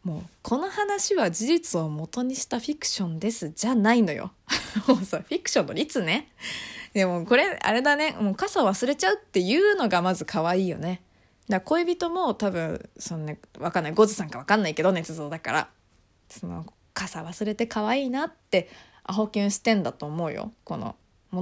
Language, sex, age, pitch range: Japanese, female, 20-39, 185-310 Hz